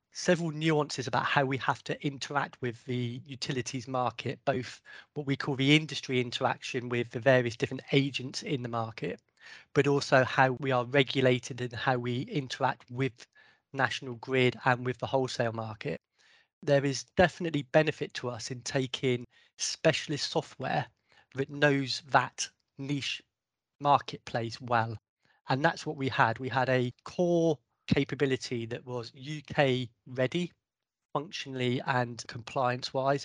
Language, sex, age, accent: English, male, 20-39, British